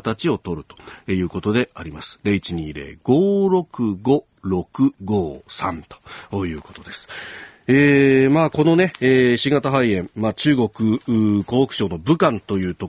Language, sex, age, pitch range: Japanese, male, 40-59, 100-150 Hz